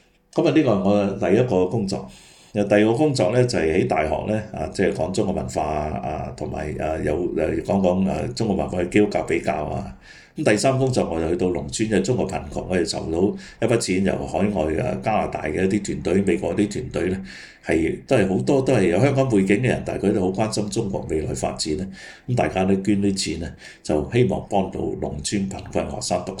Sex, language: male, Chinese